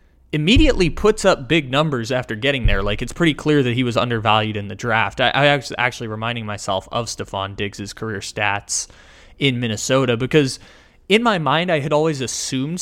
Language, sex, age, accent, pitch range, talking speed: English, male, 20-39, American, 115-145 Hz, 185 wpm